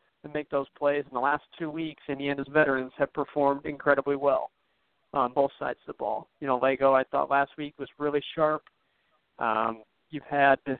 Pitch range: 135-150 Hz